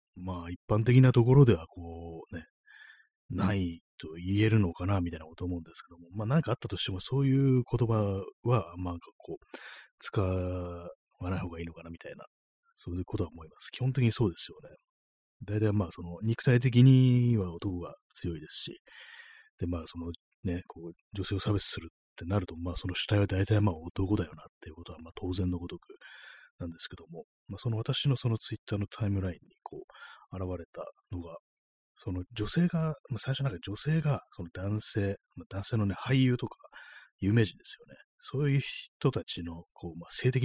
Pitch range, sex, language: 90-115 Hz, male, Japanese